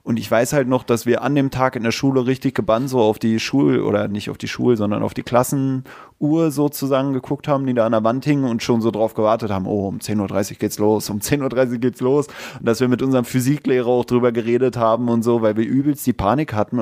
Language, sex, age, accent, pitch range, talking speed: German, male, 30-49, German, 110-145 Hz, 255 wpm